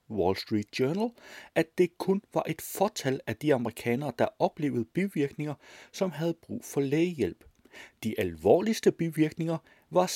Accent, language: native, Danish